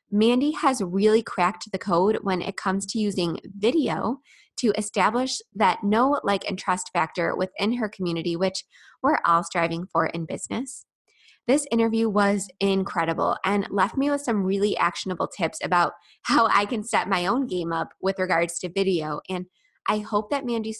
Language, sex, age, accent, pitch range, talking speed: English, female, 20-39, American, 185-220 Hz, 175 wpm